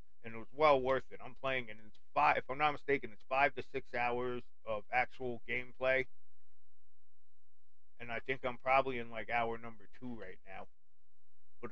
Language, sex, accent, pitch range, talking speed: English, male, American, 95-130 Hz, 185 wpm